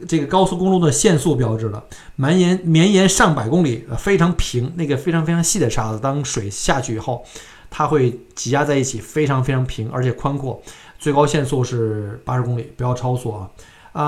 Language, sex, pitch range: Chinese, male, 115-155 Hz